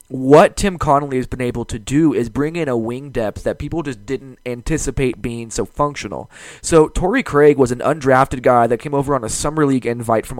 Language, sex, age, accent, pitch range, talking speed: English, male, 20-39, American, 120-145 Hz, 220 wpm